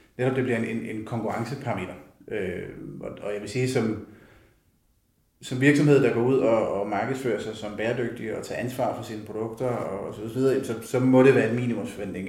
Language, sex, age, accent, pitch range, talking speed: Danish, male, 30-49, native, 110-130 Hz, 200 wpm